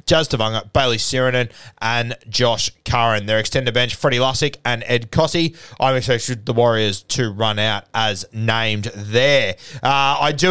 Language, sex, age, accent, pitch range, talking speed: English, male, 20-39, Australian, 110-135 Hz, 160 wpm